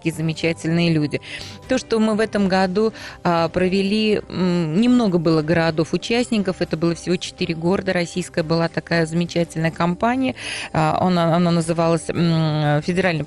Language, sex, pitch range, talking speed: Russian, female, 165-190 Hz, 120 wpm